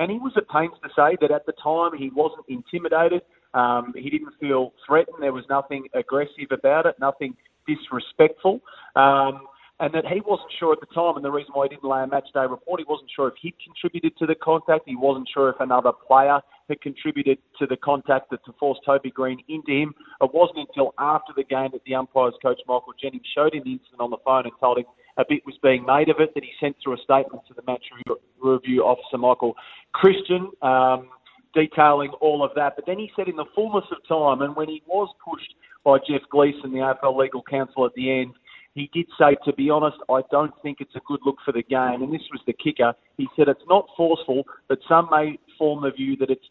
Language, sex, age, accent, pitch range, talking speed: English, male, 30-49, Australian, 130-155 Hz, 230 wpm